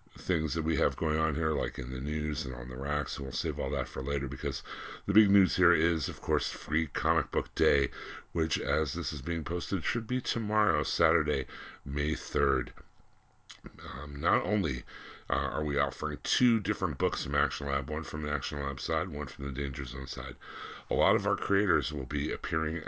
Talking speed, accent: 205 wpm, American